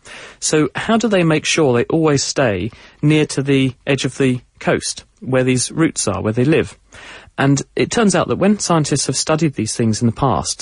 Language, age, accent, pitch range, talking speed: English, 40-59, British, 120-140 Hz, 210 wpm